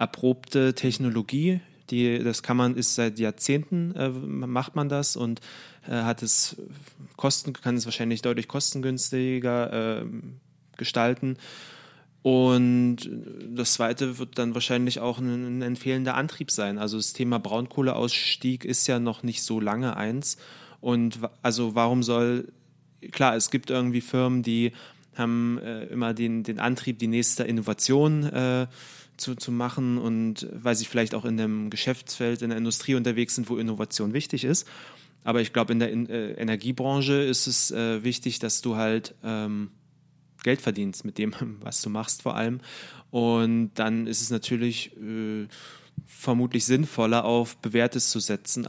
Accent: German